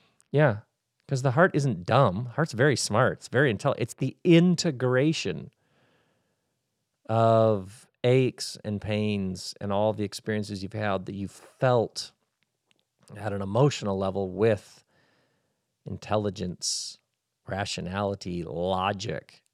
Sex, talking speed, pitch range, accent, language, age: male, 110 wpm, 105-135 Hz, American, English, 40-59